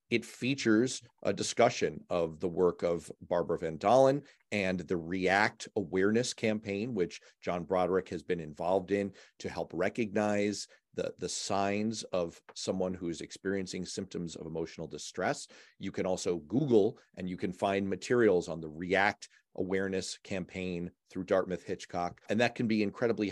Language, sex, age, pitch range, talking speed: English, male, 40-59, 90-120 Hz, 150 wpm